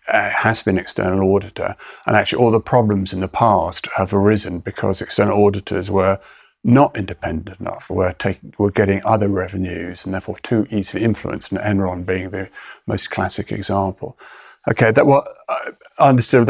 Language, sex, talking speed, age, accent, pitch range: English, male, 165 wpm, 40-59, British, 100-120 Hz